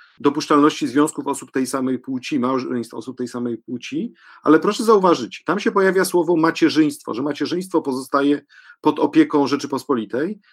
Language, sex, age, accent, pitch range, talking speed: Polish, male, 40-59, native, 150-185 Hz, 140 wpm